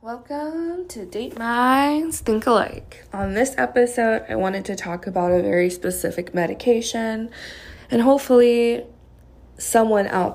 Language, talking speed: English, 130 wpm